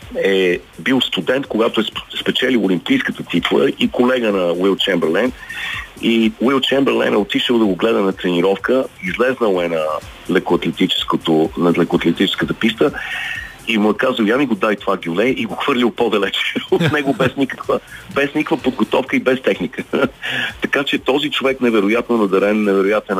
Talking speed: 155 wpm